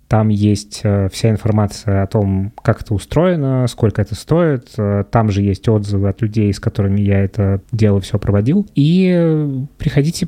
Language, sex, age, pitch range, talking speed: Russian, male, 20-39, 105-130 Hz, 160 wpm